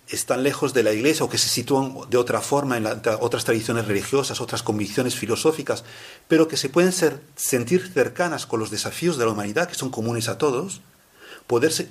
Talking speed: 200 wpm